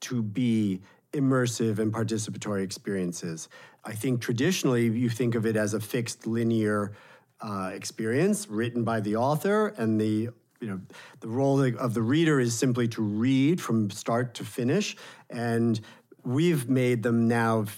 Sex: male